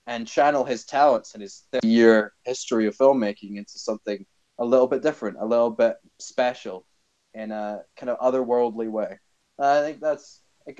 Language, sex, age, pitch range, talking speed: English, male, 20-39, 115-155 Hz, 170 wpm